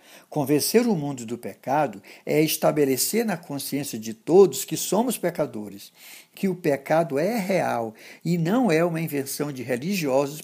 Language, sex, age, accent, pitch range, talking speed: Portuguese, male, 60-79, Brazilian, 135-190 Hz, 150 wpm